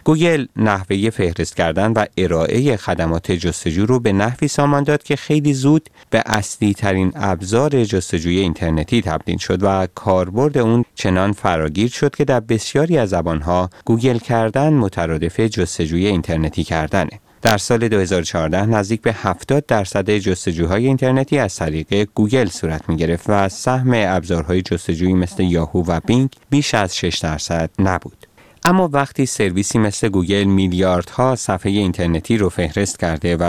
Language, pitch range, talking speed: Persian, 90-115 Hz, 145 wpm